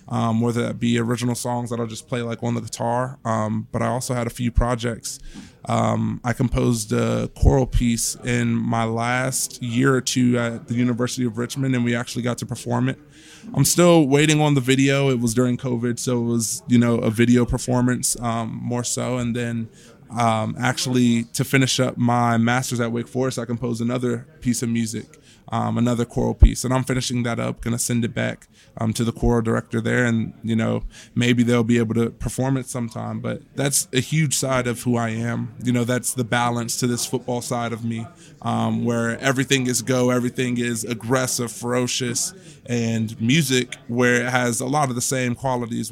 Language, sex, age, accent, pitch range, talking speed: English, male, 20-39, American, 115-125 Hz, 205 wpm